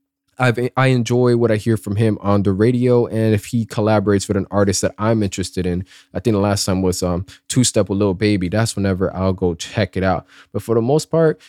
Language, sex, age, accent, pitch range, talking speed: English, male, 20-39, American, 100-140 Hz, 240 wpm